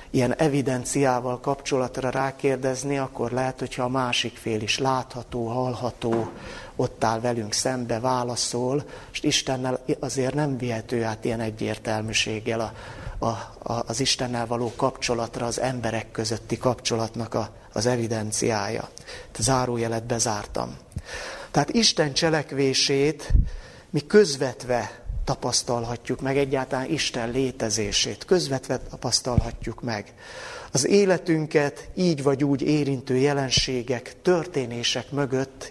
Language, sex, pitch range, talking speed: Hungarian, male, 120-140 Hz, 110 wpm